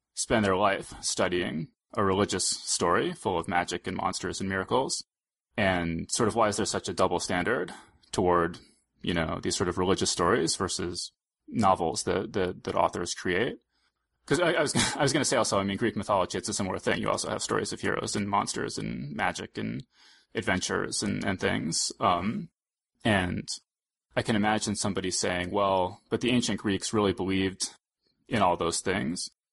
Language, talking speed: English, 185 wpm